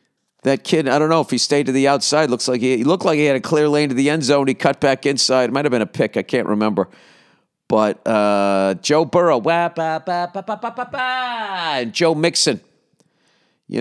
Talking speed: 245 wpm